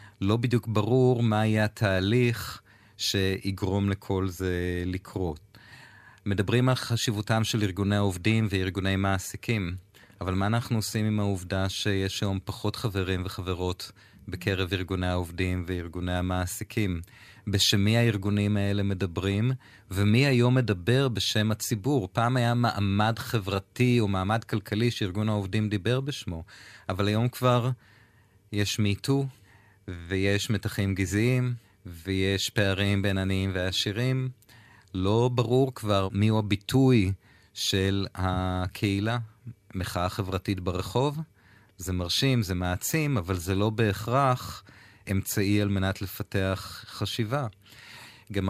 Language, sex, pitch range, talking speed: Hebrew, male, 95-115 Hz, 115 wpm